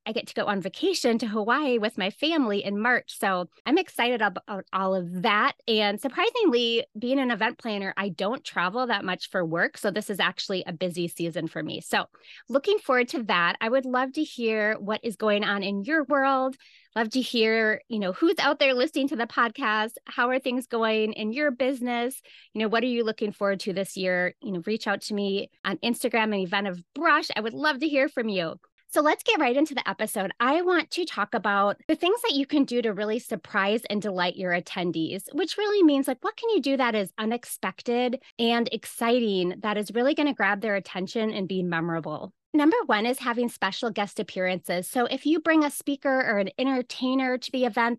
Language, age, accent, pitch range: English, 30-49, American, 200-260 Hz